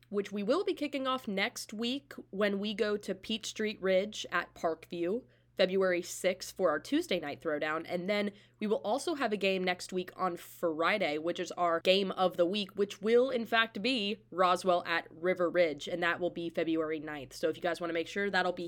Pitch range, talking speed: 170-220 Hz, 220 wpm